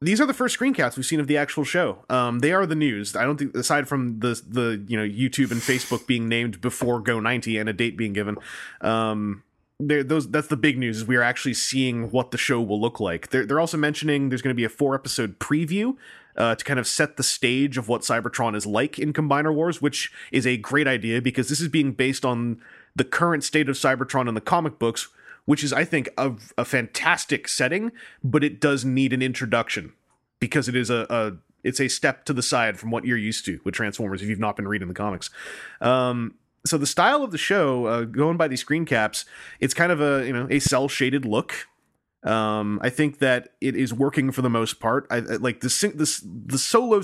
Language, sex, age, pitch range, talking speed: English, male, 30-49, 115-145 Hz, 230 wpm